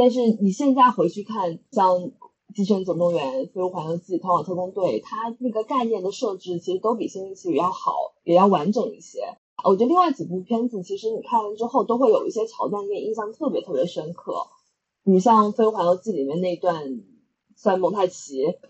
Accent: native